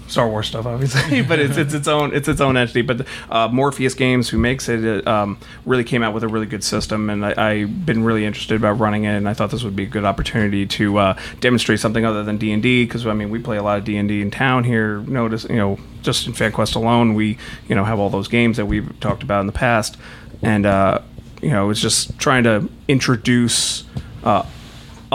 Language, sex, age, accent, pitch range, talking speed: English, male, 30-49, American, 105-120 Hz, 240 wpm